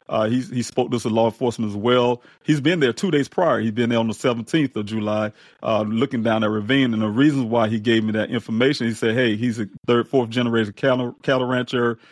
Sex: male